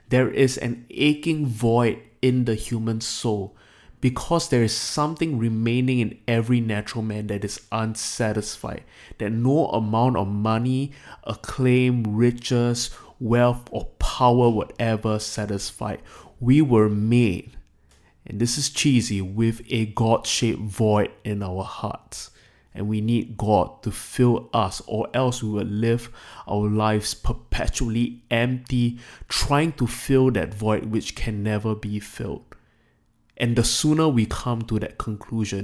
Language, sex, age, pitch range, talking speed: English, male, 20-39, 105-120 Hz, 140 wpm